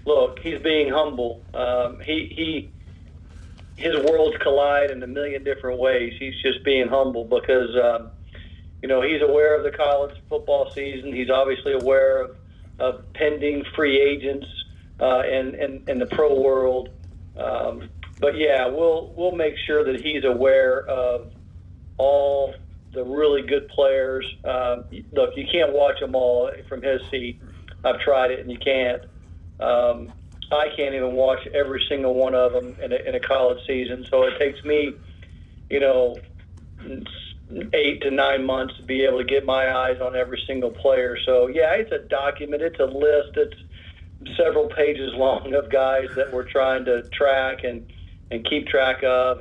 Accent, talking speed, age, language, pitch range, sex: American, 170 wpm, 50-69, English, 115-145 Hz, male